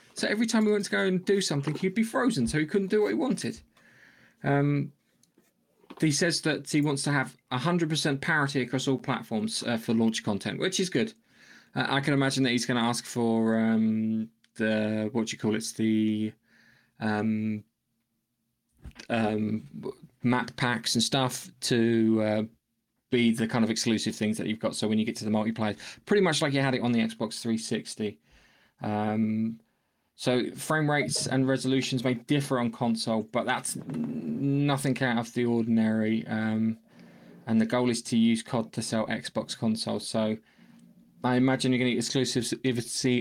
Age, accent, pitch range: 20-39, British, 110-140 Hz